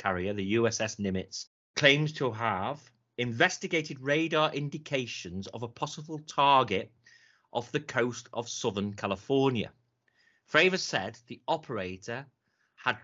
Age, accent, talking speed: 30-49, British, 115 wpm